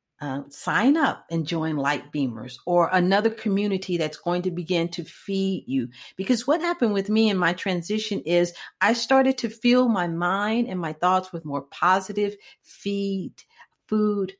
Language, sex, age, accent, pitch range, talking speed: English, female, 50-69, American, 175-225 Hz, 165 wpm